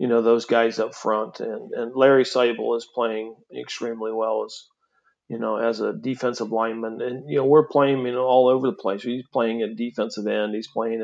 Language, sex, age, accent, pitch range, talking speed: English, male, 40-59, American, 110-125 Hz, 210 wpm